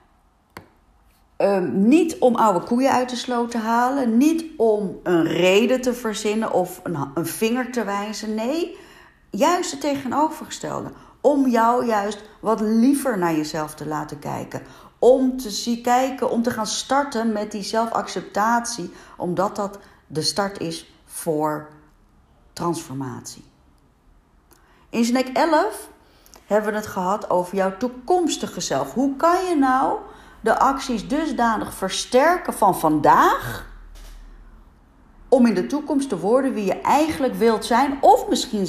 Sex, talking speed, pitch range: female, 135 wpm, 160-250 Hz